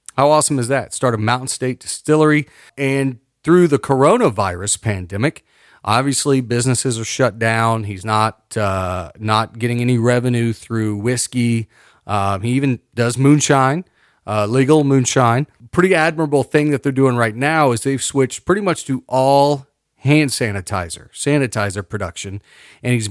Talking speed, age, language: 145 wpm, 40-59, English